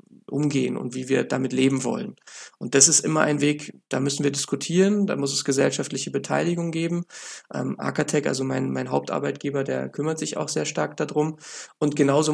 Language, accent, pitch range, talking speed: German, German, 140-165 Hz, 185 wpm